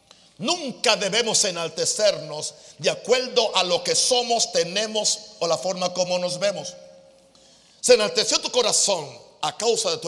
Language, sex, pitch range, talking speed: Spanish, male, 200-285 Hz, 145 wpm